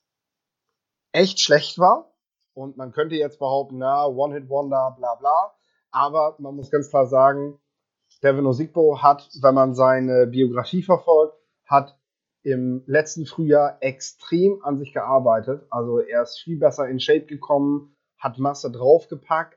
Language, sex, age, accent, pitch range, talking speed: German, male, 30-49, German, 130-155 Hz, 145 wpm